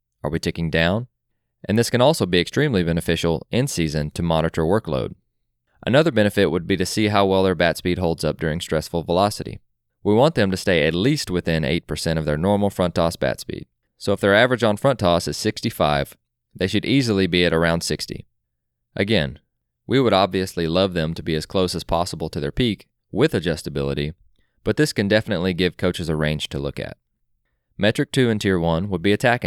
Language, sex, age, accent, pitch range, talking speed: English, male, 20-39, American, 80-105 Hz, 205 wpm